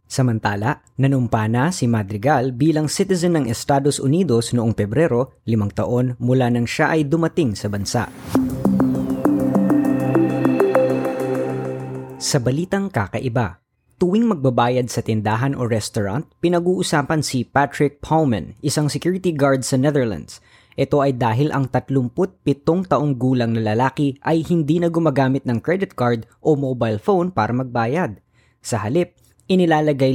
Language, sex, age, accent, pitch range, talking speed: Filipino, female, 20-39, native, 120-150 Hz, 125 wpm